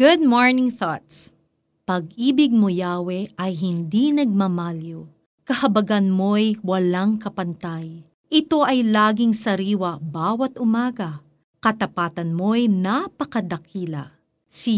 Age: 40-59